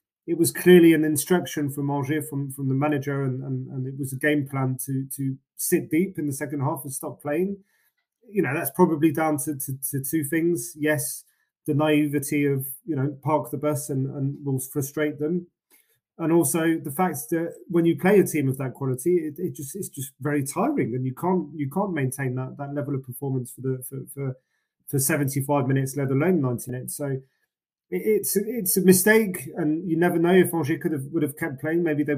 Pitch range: 140-170 Hz